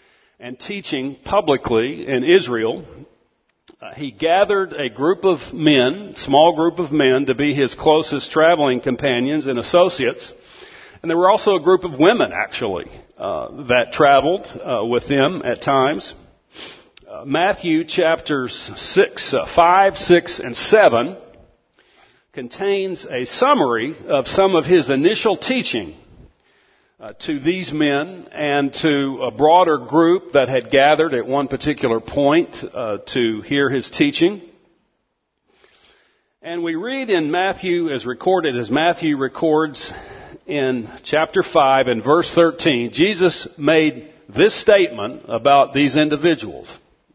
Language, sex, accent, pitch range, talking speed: English, male, American, 140-190 Hz, 130 wpm